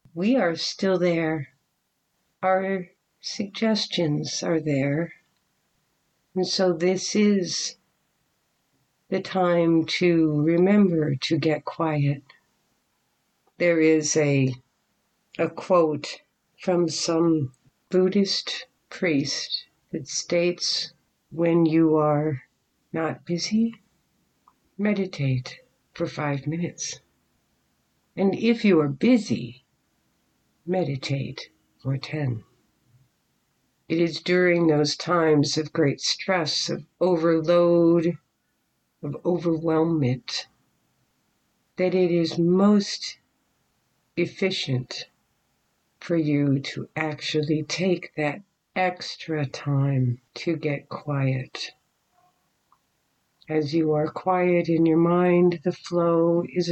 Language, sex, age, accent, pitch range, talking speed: English, female, 60-79, American, 150-180 Hz, 90 wpm